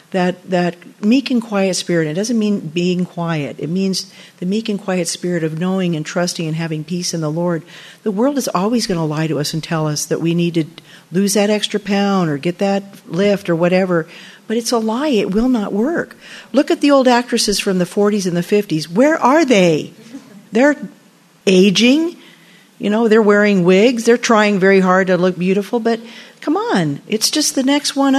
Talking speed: 210 wpm